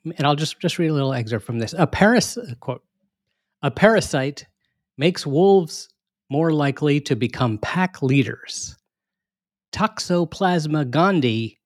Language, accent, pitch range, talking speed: English, American, 125-175 Hz, 130 wpm